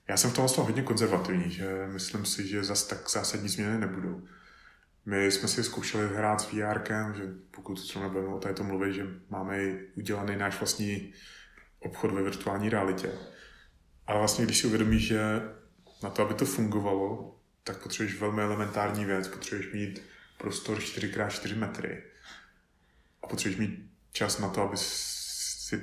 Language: Czech